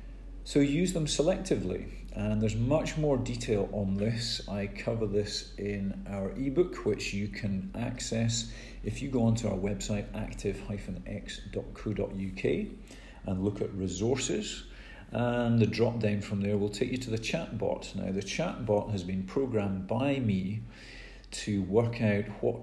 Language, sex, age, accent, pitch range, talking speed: English, male, 40-59, British, 100-115 Hz, 150 wpm